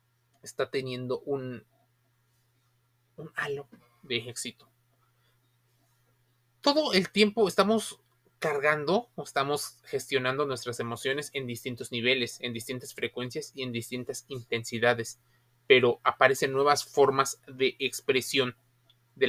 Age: 30-49